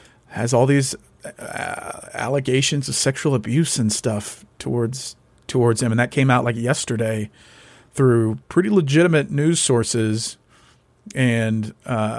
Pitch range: 115-135 Hz